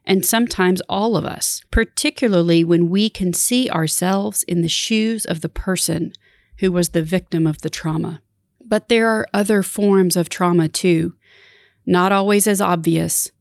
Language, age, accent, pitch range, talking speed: English, 40-59, American, 165-195 Hz, 160 wpm